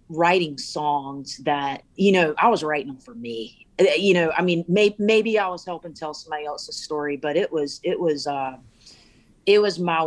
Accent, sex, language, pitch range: American, female, English, 140-170 Hz